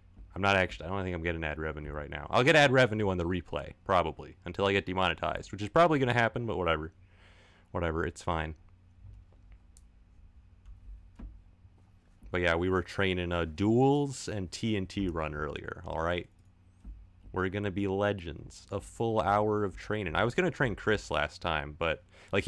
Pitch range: 90-115 Hz